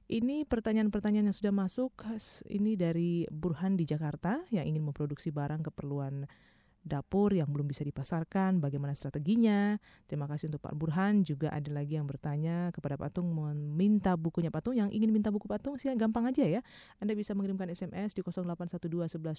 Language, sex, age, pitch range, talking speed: Indonesian, female, 20-39, 150-210 Hz, 160 wpm